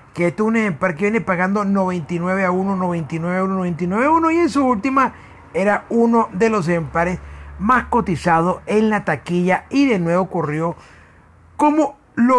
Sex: male